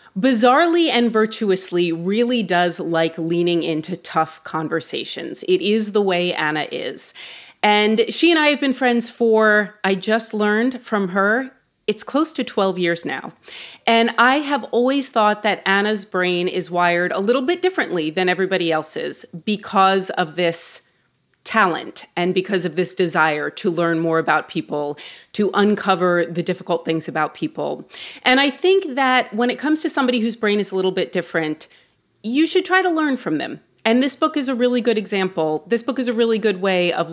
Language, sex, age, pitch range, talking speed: English, female, 30-49, 175-240 Hz, 180 wpm